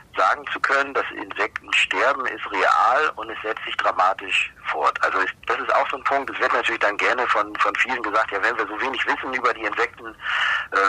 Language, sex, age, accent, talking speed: German, male, 40-59, German, 225 wpm